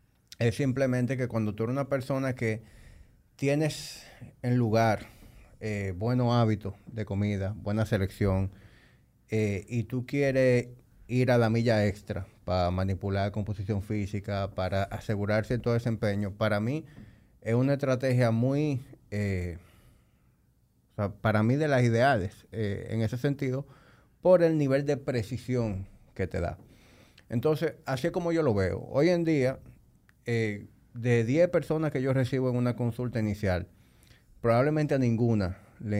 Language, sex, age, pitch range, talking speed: Spanish, male, 30-49, 105-125 Hz, 145 wpm